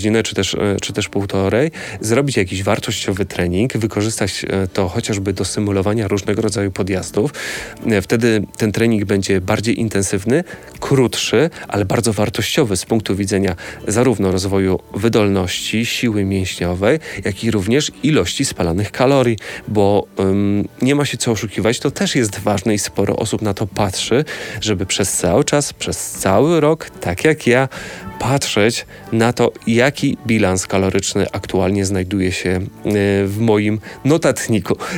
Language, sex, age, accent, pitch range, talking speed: Polish, male, 30-49, native, 100-120 Hz, 135 wpm